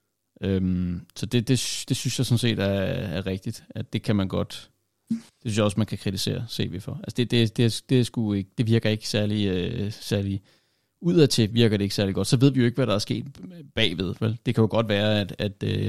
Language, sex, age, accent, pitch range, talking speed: Danish, male, 30-49, native, 100-120 Hz, 235 wpm